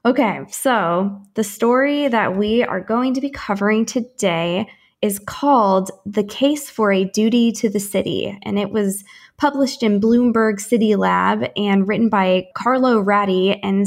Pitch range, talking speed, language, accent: 195-225 Hz, 155 wpm, English, American